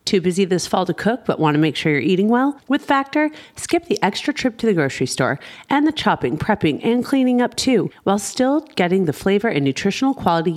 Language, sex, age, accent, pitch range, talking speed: English, female, 40-59, American, 170-250 Hz, 220 wpm